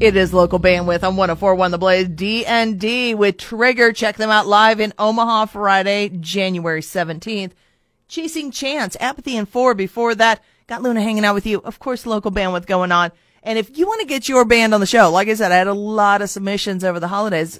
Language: English